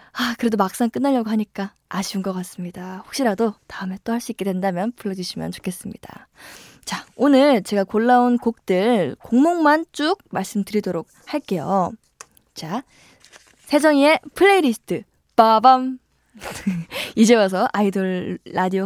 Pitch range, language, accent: 190-275 Hz, Korean, native